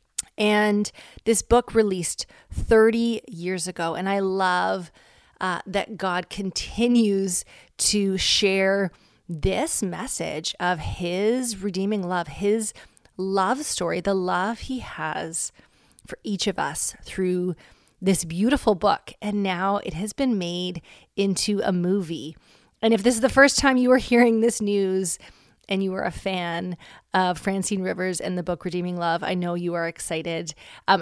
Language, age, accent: English, 30-49, American